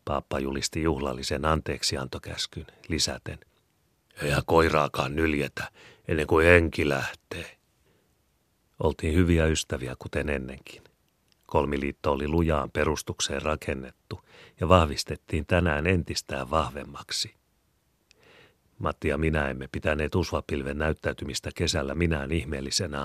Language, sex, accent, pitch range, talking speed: Finnish, male, native, 70-85 Hz, 95 wpm